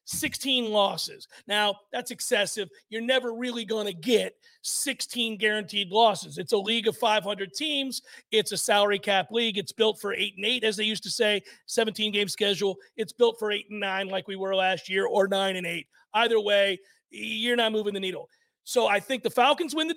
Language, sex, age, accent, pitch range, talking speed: English, male, 40-59, American, 205-255 Hz, 205 wpm